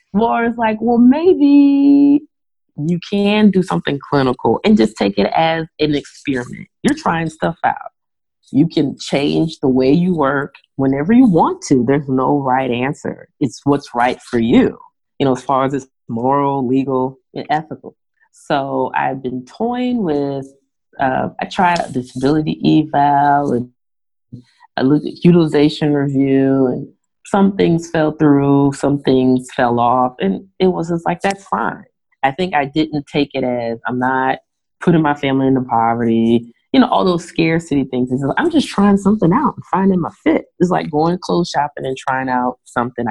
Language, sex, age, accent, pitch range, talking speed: English, female, 30-49, American, 130-170 Hz, 165 wpm